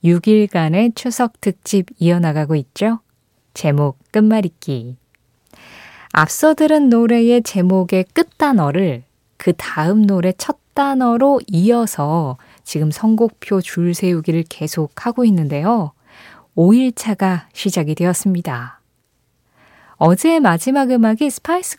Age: 20-39